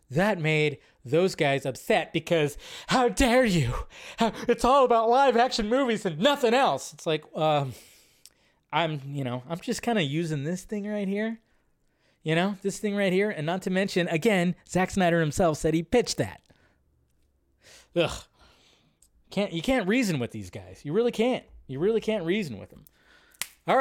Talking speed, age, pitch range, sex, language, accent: 175 wpm, 20-39, 155-220 Hz, male, English, American